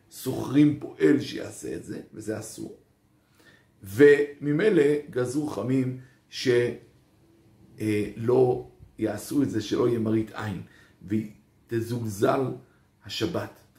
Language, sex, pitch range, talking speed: Hebrew, male, 110-185 Hz, 85 wpm